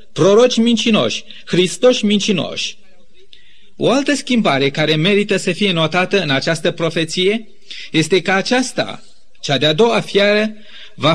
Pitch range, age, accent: 170-215 Hz, 30-49, native